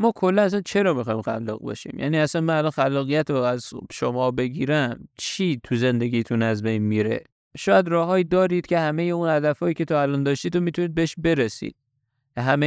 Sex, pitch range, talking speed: male, 125-160 Hz, 175 wpm